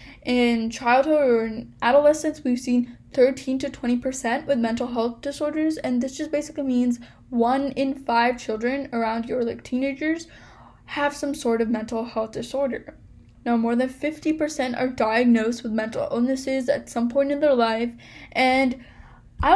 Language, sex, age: English, female, 10-29